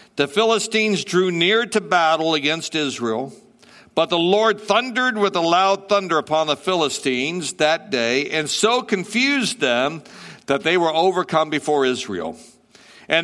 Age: 60-79